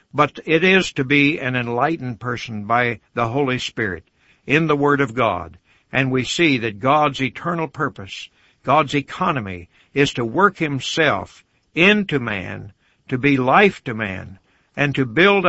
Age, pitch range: 60-79, 115-145 Hz